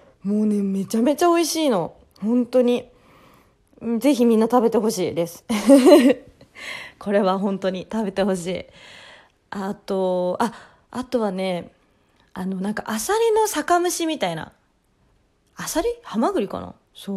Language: Japanese